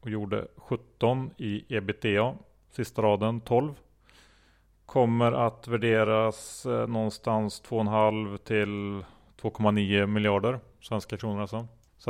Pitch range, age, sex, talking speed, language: 100-115 Hz, 30-49, male, 100 wpm, Swedish